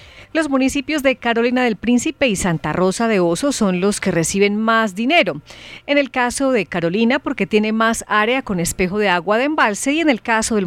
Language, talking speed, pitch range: Spanish, 210 wpm, 190-245 Hz